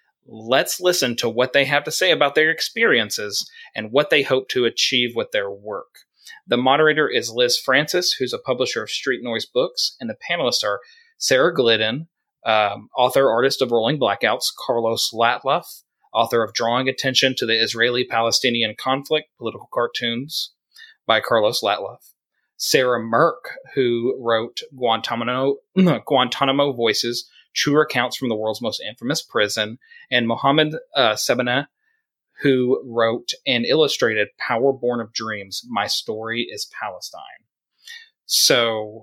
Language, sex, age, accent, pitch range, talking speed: English, male, 30-49, American, 120-160 Hz, 140 wpm